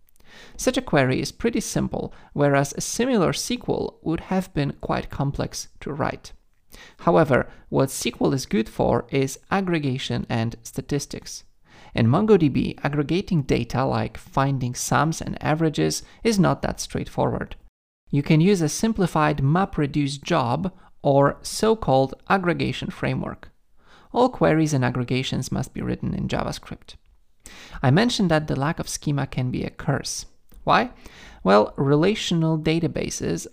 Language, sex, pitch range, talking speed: English, male, 135-180 Hz, 135 wpm